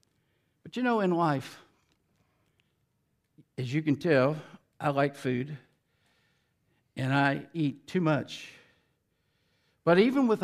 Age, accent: 60-79, American